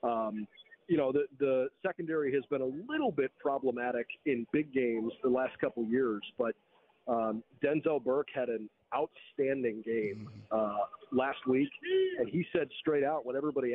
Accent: American